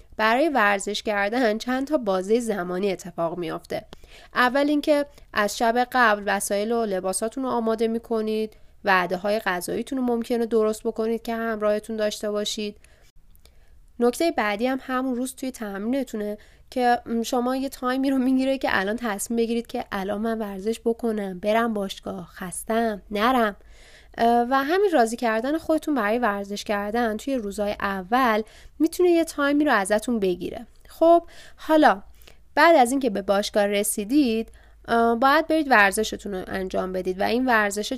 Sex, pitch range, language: female, 205-260 Hz, Persian